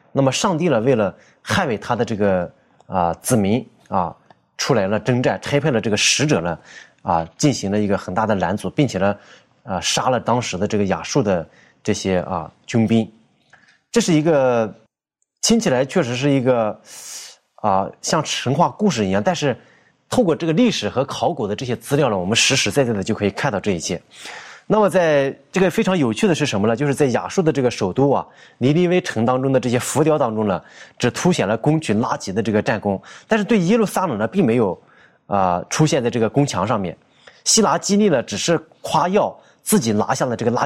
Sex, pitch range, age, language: male, 110-155 Hz, 20-39, Chinese